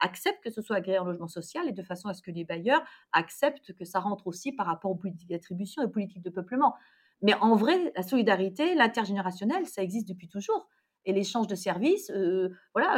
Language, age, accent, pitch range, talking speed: French, 40-59, French, 200-275 Hz, 215 wpm